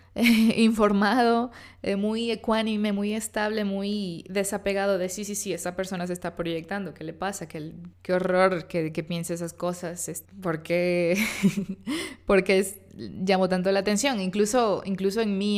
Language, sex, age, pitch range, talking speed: Spanish, female, 20-39, 180-225 Hz, 155 wpm